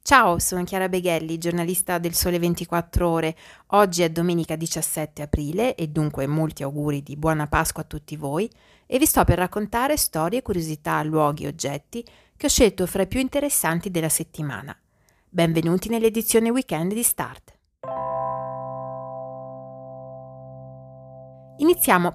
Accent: native